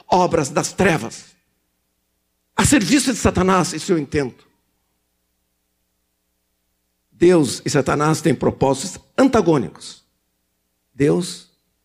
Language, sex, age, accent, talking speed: Portuguese, male, 60-79, Brazilian, 85 wpm